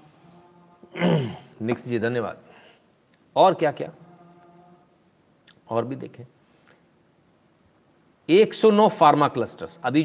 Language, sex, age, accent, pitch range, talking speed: Hindi, male, 40-59, native, 125-175 Hz, 65 wpm